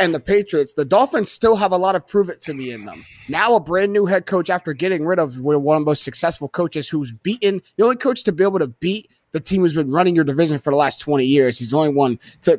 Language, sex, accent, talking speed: English, male, American, 260 wpm